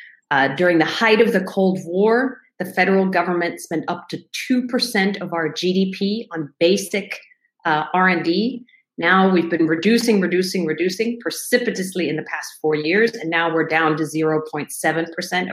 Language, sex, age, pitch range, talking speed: English, female, 40-59, 165-205 Hz, 155 wpm